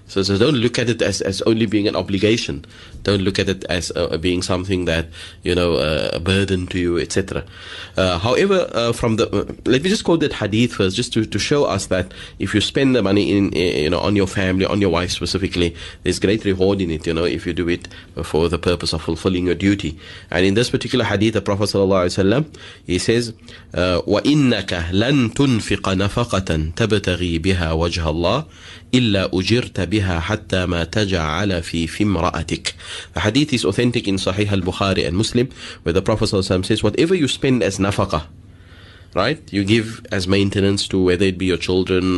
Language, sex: English, male